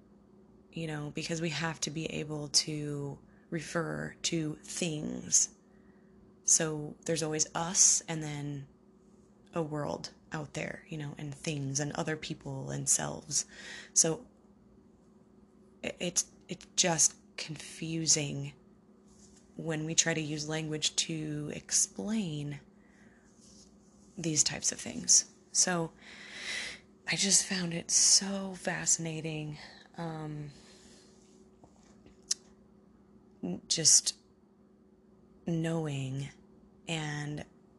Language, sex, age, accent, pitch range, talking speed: English, female, 20-39, American, 150-195 Hz, 95 wpm